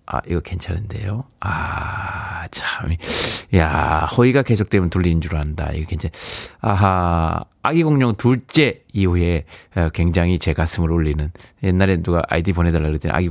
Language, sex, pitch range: Korean, male, 85-140 Hz